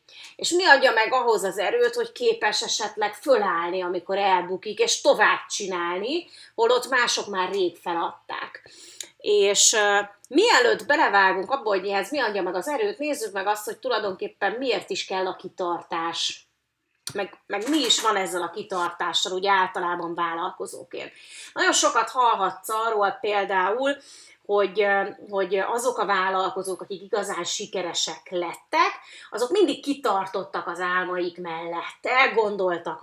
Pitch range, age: 185-300 Hz, 30-49